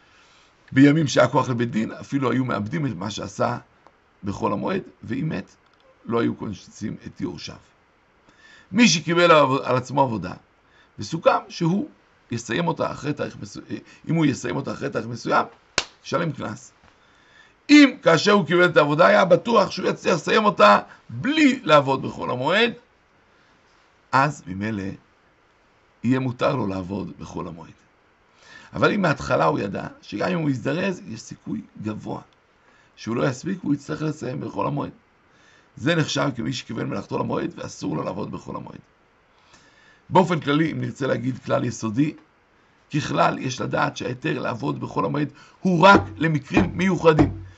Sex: male